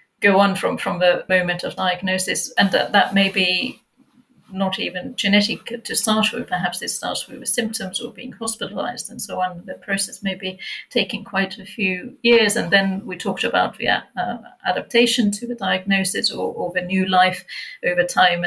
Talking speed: 185 wpm